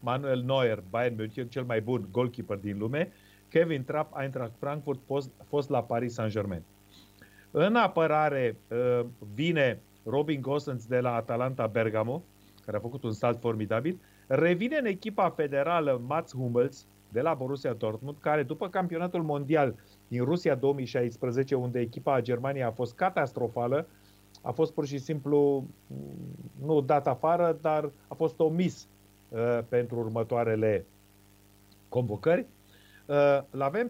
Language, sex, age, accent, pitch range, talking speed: Romanian, male, 30-49, native, 115-155 Hz, 130 wpm